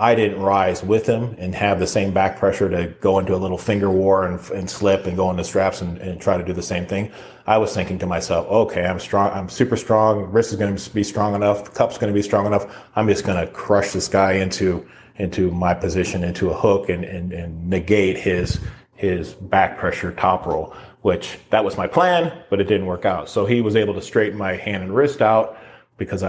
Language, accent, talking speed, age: English, American, 240 wpm, 30-49